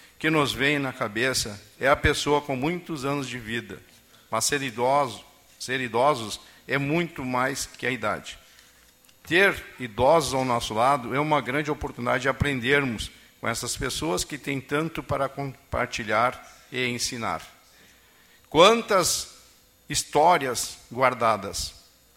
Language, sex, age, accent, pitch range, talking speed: Portuguese, male, 50-69, Brazilian, 120-155 Hz, 130 wpm